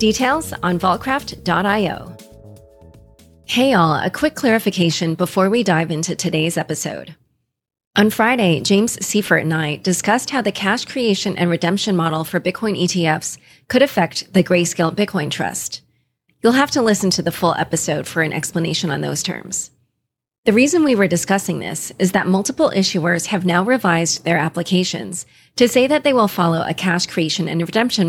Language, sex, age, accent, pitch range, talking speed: English, female, 30-49, American, 165-215 Hz, 165 wpm